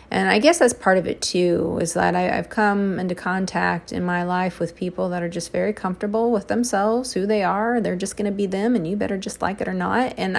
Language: English